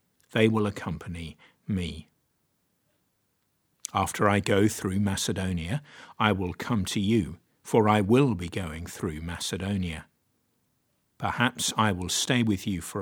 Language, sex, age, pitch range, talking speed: English, male, 50-69, 90-120 Hz, 130 wpm